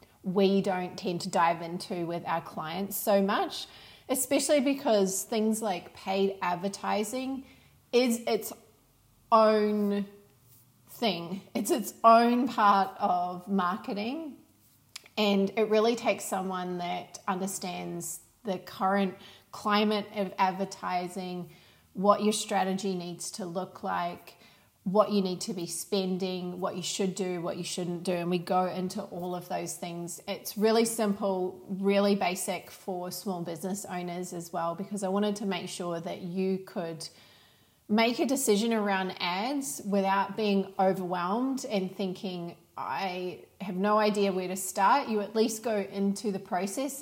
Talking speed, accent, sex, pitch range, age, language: 145 wpm, Australian, female, 180-210 Hz, 30-49, English